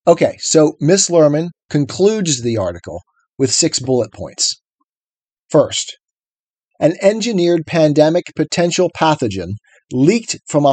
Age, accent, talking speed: 40-59, American, 110 wpm